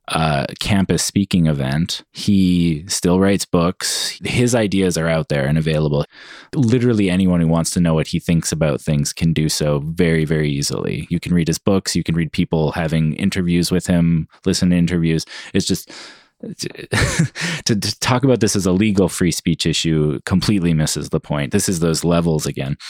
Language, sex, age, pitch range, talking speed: English, male, 20-39, 80-90 Hz, 185 wpm